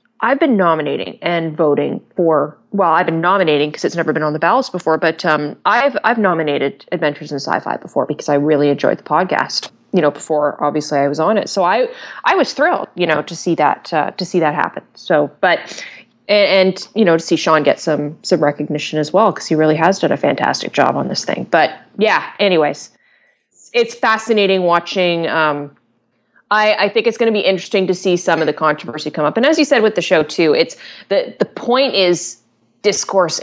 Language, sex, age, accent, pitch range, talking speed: English, female, 20-39, American, 155-205 Hz, 210 wpm